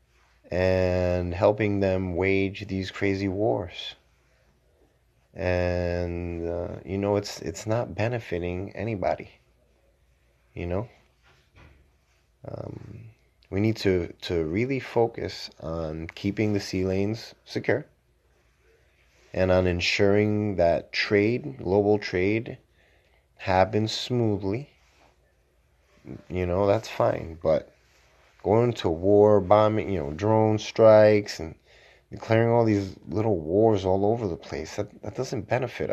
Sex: male